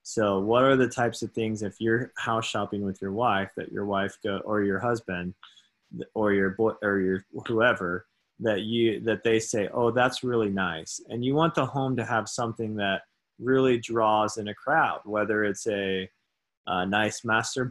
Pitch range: 105-120 Hz